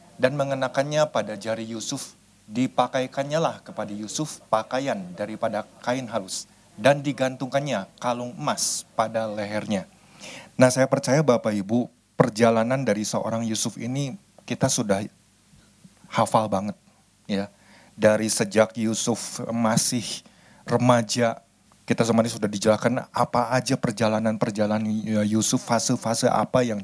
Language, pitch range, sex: Indonesian, 105-125 Hz, male